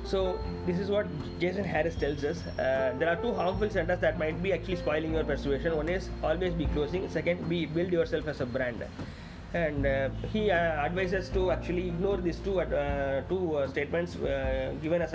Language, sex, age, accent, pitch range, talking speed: Tamil, male, 30-49, native, 150-190 Hz, 200 wpm